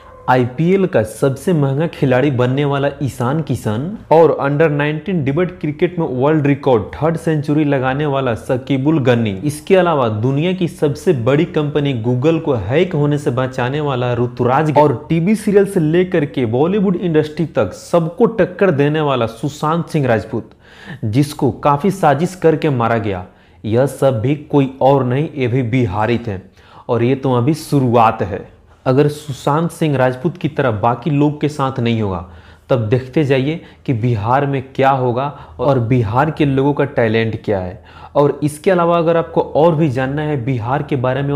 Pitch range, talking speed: 120-150 Hz, 170 wpm